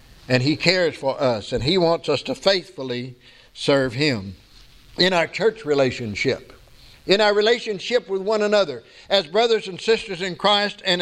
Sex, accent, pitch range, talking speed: male, American, 170-210 Hz, 165 wpm